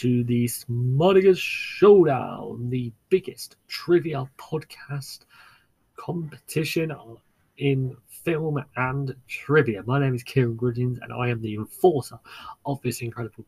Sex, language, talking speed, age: male, English, 115 wpm, 30-49